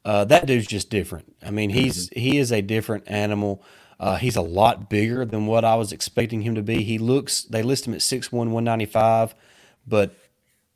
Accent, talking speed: American, 195 wpm